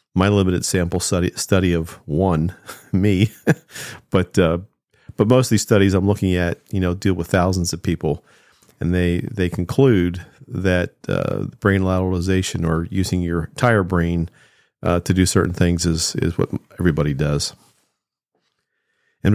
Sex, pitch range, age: male, 90-105 Hz, 50-69